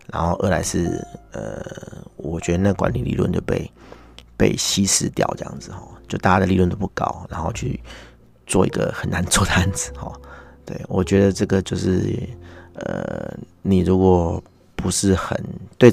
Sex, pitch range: male, 85-100 Hz